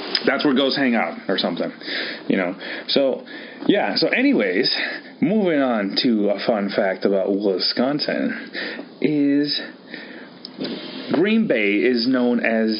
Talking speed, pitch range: 125 wpm, 110-175 Hz